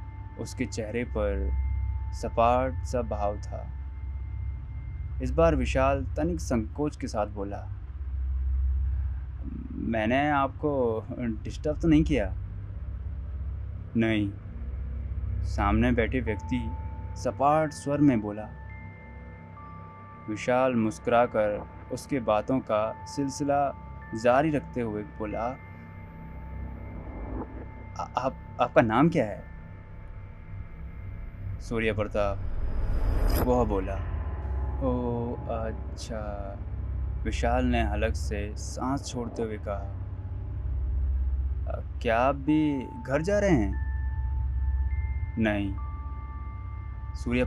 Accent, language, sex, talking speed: native, Hindi, male, 85 wpm